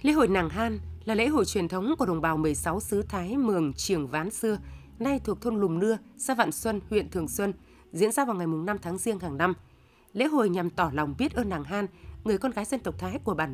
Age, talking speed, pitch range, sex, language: 20-39, 255 wpm, 175-235 Hz, female, Vietnamese